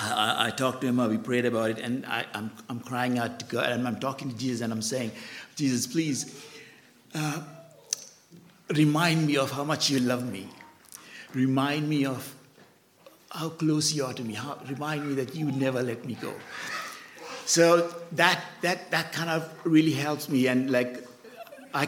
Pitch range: 125-150 Hz